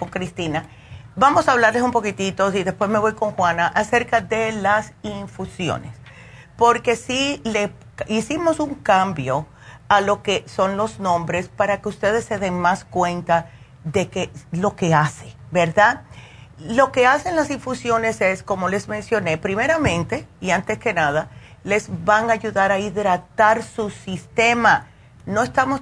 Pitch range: 175-235 Hz